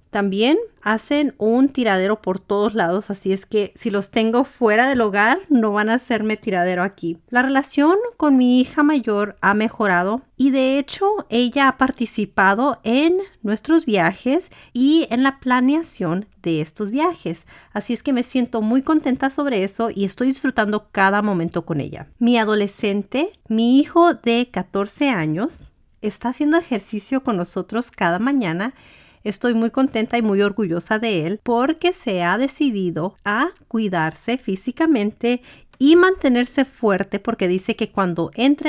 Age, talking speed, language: 40-59, 155 wpm, Spanish